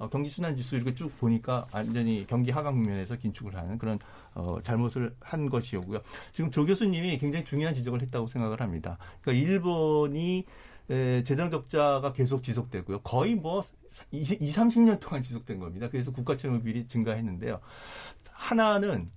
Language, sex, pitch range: Korean, male, 115-155 Hz